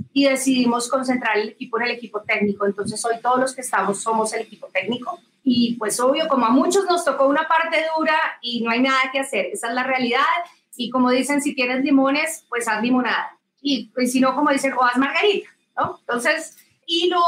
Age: 30-49